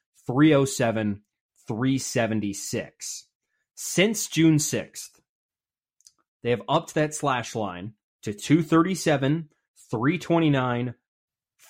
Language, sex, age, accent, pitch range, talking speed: English, male, 20-39, American, 110-145 Hz, 65 wpm